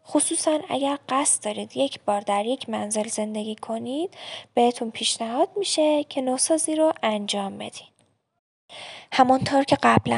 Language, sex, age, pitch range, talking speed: Persian, female, 10-29, 220-285 Hz, 130 wpm